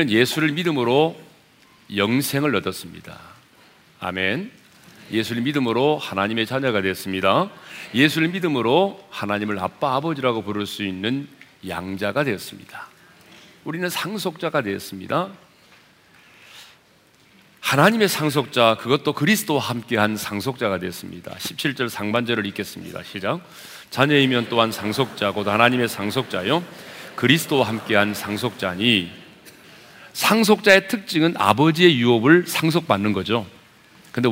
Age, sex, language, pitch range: 40-59, male, Korean, 105-165 Hz